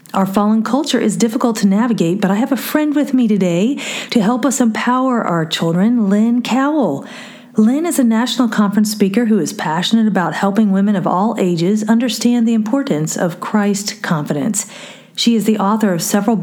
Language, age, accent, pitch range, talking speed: English, 40-59, American, 190-235 Hz, 185 wpm